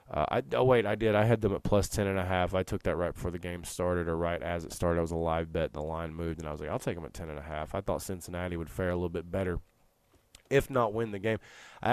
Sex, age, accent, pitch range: male, 20-39, American, 80-100 Hz